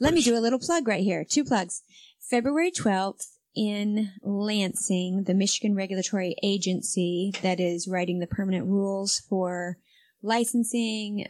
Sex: female